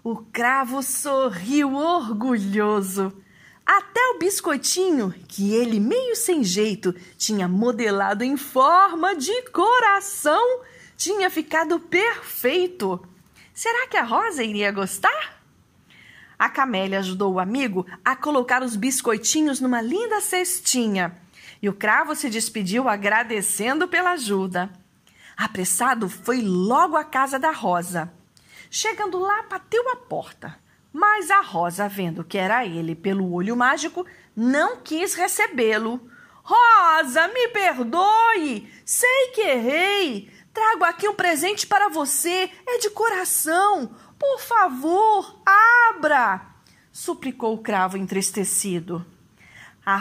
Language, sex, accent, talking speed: Portuguese, female, Brazilian, 115 wpm